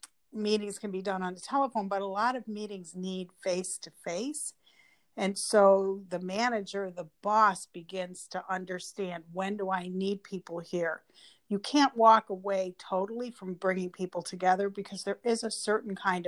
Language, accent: English, American